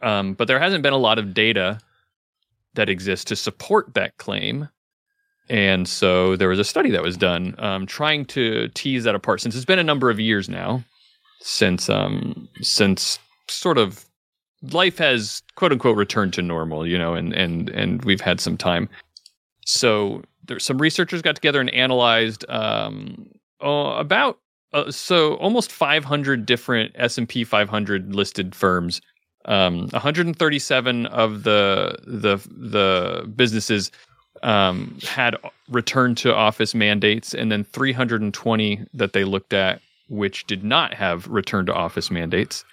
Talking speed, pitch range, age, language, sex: 155 wpm, 105-145 Hz, 30-49, English, male